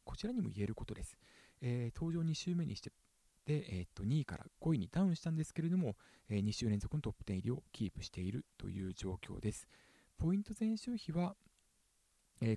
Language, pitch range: Japanese, 110-165 Hz